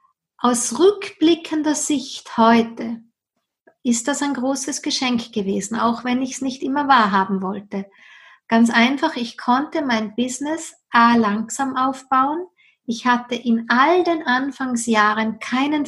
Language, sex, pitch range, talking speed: German, female, 230-280 Hz, 130 wpm